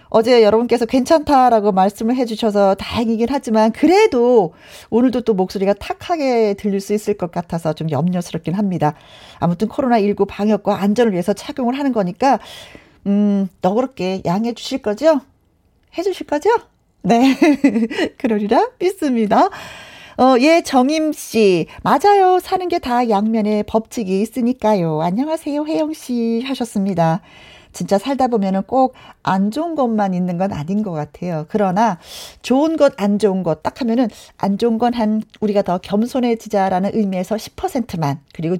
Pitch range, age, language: 200-285 Hz, 40-59, Korean